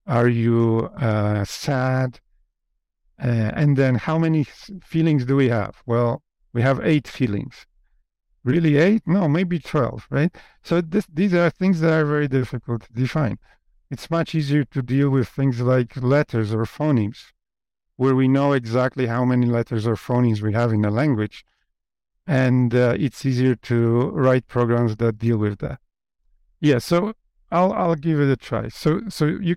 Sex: male